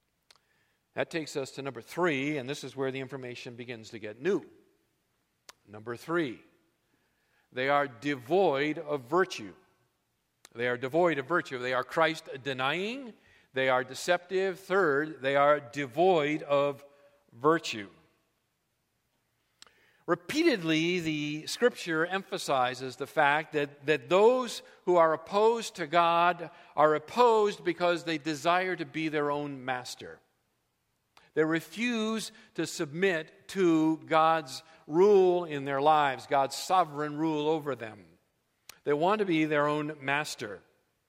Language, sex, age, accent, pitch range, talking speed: English, male, 50-69, American, 140-185 Hz, 125 wpm